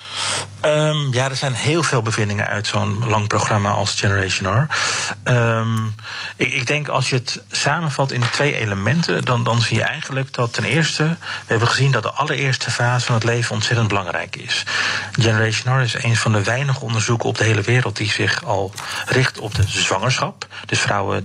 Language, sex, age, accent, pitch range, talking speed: Dutch, male, 40-59, Dutch, 105-125 Hz, 185 wpm